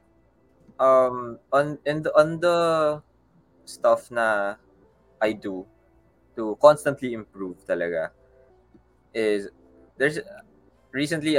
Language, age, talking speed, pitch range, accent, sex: Filipino, 20-39, 85 wpm, 95-125 Hz, native, male